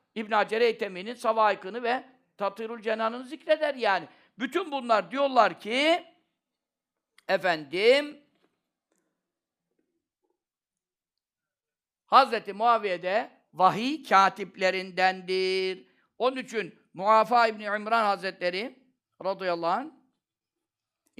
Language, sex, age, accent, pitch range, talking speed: Turkish, male, 50-69, native, 210-275 Hz, 70 wpm